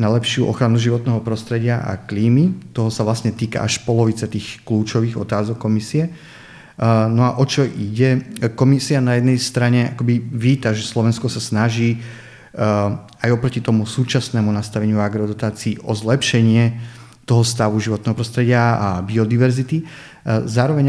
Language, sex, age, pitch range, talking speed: Slovak, male, 30-49, 110-125 Hz, 135 wpm